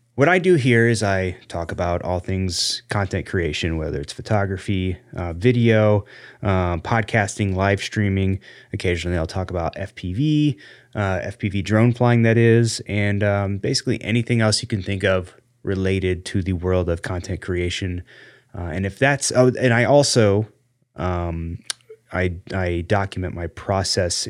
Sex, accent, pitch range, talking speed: male, American, 90-120 Hz, 140 wpm